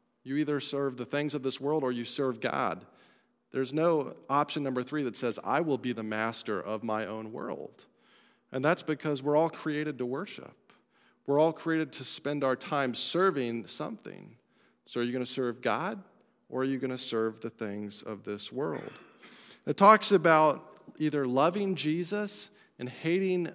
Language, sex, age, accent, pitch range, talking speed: English, male, 40-59, American, 125-165 Hz, 180 wpm